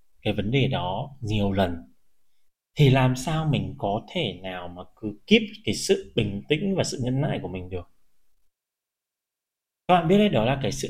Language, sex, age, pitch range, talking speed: Vietnamese, male, 20-39, 115-155 Hz, 195 wpm